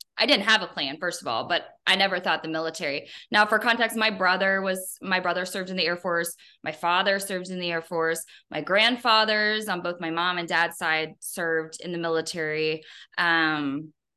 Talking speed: 205 wpm